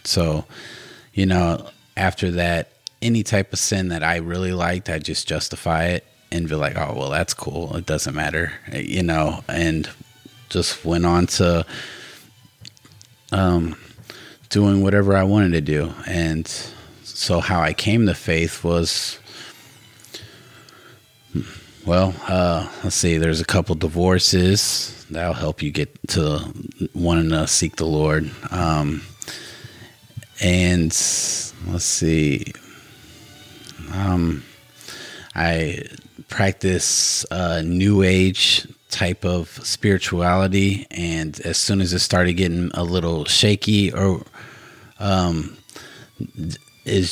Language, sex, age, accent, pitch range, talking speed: English, male, 30-49, American, 85-100 Hz, 120 wpm